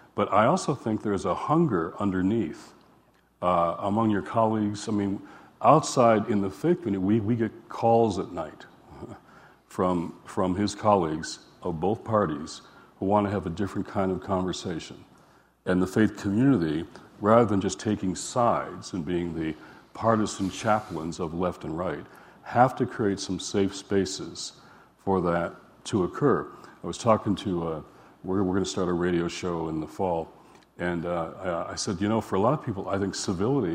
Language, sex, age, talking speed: English, male, 60-79, 170 wpm